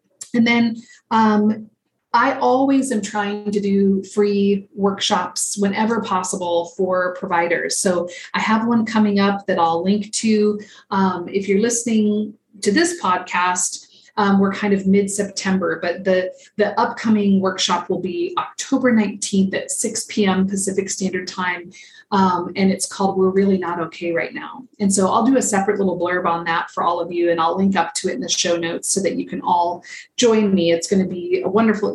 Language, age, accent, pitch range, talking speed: English, 30-49, American, 180-210 Hz, 185 wpm